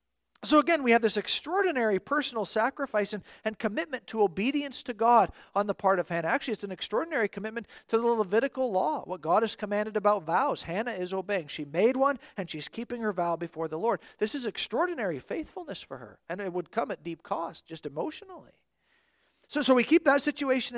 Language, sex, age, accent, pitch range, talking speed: English, male, 50-69, American, 185-245 Hz, 200 wpm